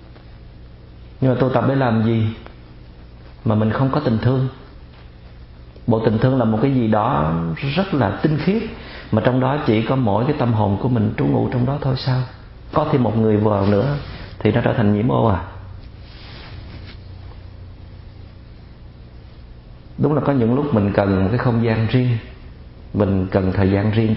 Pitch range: 95-125 Hz